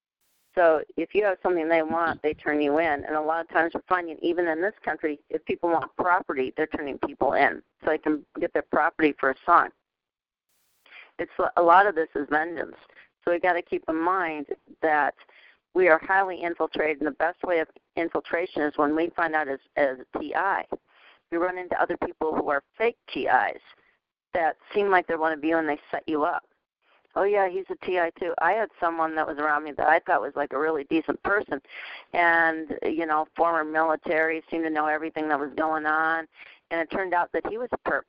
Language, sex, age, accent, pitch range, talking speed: English, female, 40-59, American, 155-185 Hz, 215 wpm